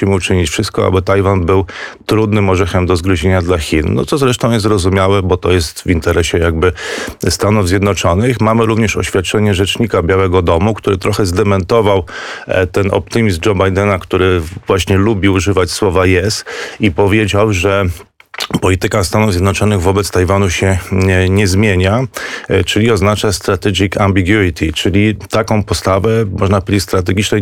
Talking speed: 145 wpm